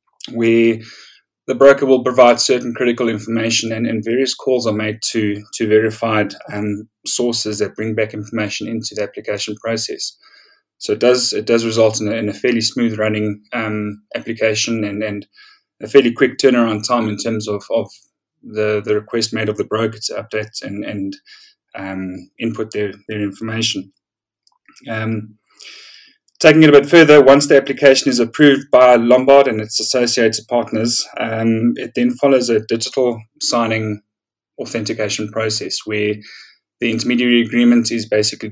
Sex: male